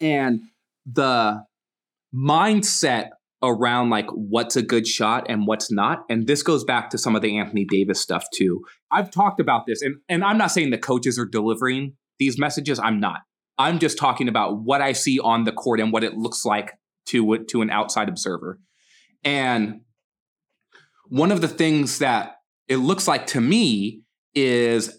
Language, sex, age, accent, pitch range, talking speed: English, male, 20-39, American, 115-160 Hz, 175 wpm